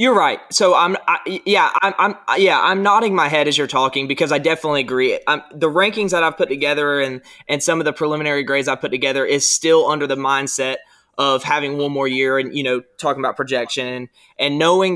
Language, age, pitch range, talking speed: English, 20-39, 130-150 Hz, 225 wpm